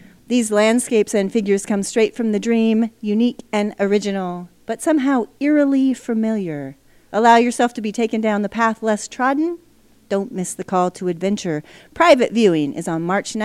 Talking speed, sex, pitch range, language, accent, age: 165 wpm, female, 180-235 Hz, English, American, 40-59